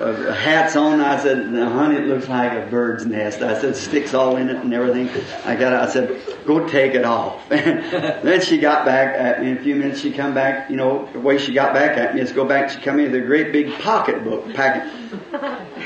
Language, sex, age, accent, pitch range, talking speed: English, male, 50-69, American, 130-195 Hz, 235 wpm